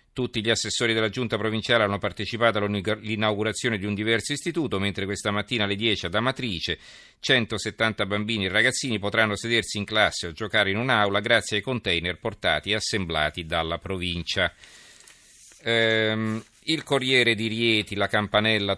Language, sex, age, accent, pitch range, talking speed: Italian, male, 40-59, native, 95-110 Hz, 145 wpm